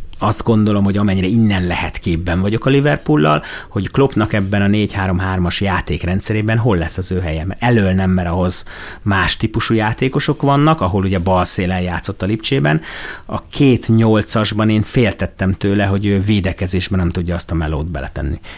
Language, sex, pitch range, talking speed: Hungarian, male, 90-110 Hz, 165 wpm